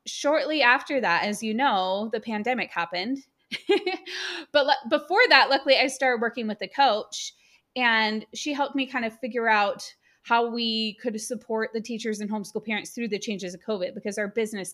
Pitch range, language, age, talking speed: 205-255 Hz, English, 20-39, 180 wpm